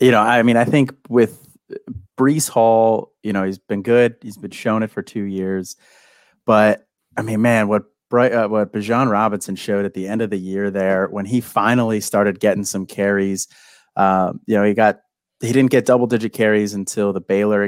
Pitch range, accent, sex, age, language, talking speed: 100-115 Hz, American, male, 30-49, English, 205 wpm